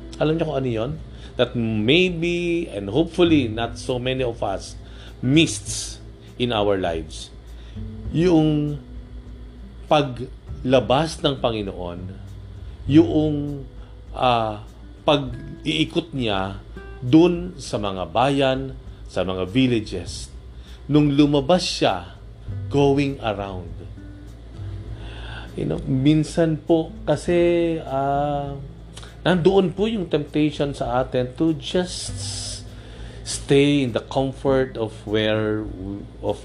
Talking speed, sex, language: 95 wpm, male, Filipino